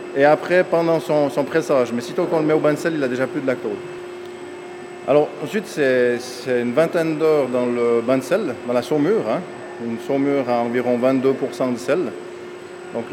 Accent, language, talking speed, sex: French, French, 210 wpm, male